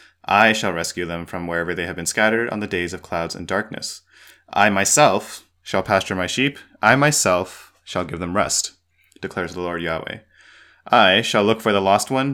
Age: 20-39